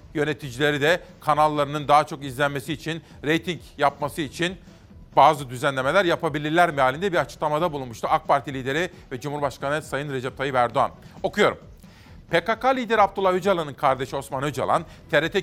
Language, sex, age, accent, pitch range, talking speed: Turkish, male, 40-59, native, 140-180 Hz, 140 wpm